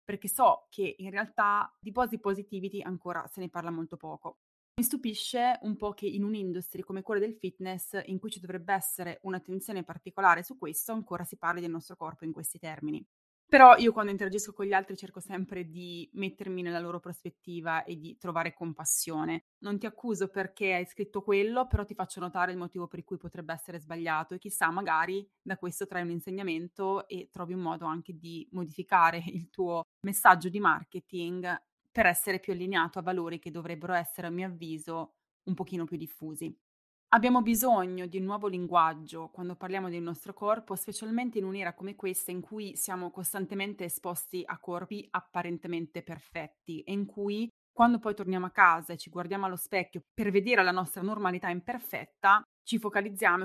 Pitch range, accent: 170-200 Hz, native